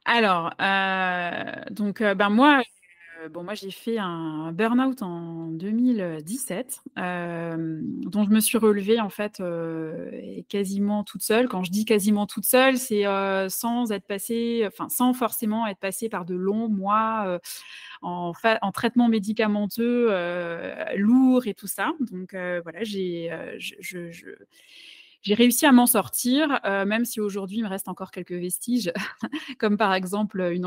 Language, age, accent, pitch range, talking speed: French, 20-39, French, 185-230 Hz, 165 wpm